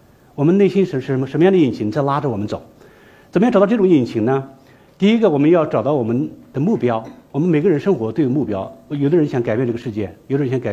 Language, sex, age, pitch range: Chinese, male, 60-79, 120-165 Hz